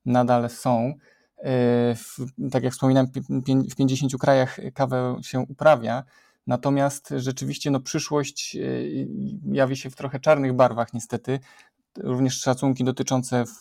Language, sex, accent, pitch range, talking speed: Polish, male, native, 120-135 Hz, 110 wpm